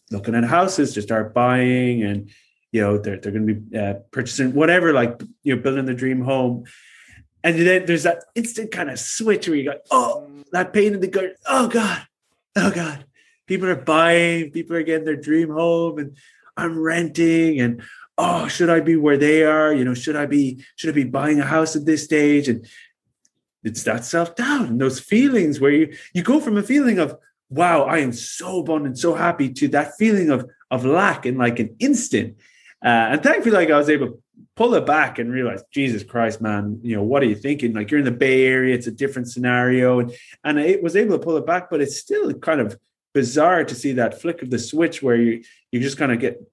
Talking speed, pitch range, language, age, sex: 220 wpm, 125-170 Hz, English, 30-49, male